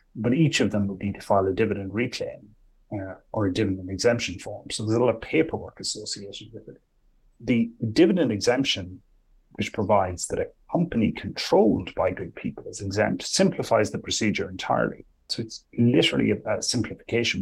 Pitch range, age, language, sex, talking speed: 100-120 Hz, 30-49, English, male, 170 wpm